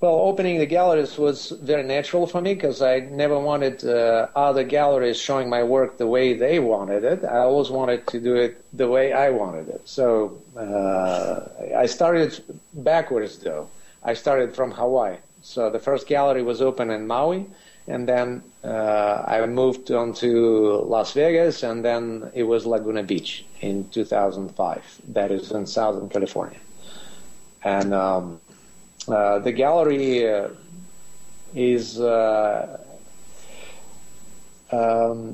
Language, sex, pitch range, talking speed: English, male, 105-135 Hz, 145 wpm